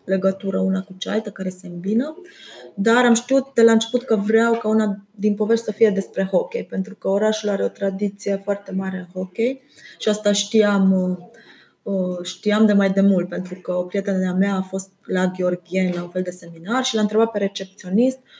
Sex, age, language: female, 20-39, Romanian